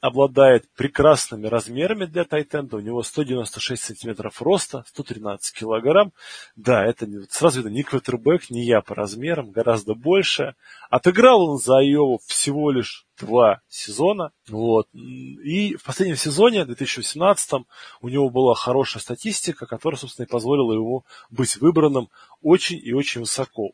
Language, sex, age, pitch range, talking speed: Russian, male, 20-39, 120-170 Hz, 135 wpm